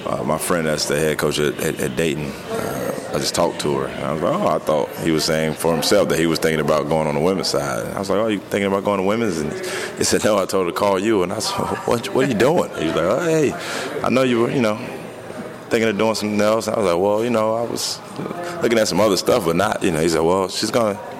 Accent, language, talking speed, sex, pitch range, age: American, English, 310 wpm, male, 75-90 Hz, 20-39